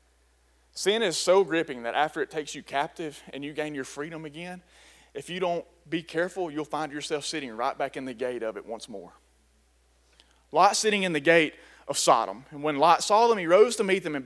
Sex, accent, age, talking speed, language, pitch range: male, American, 30-49, 220 wpm, English, 150-230 Hz